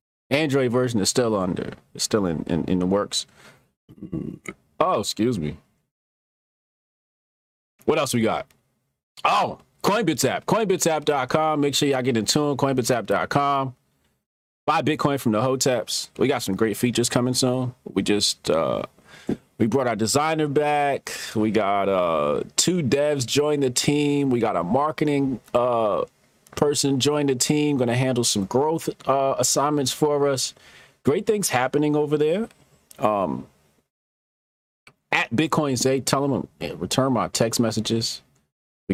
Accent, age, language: American, 30-49, English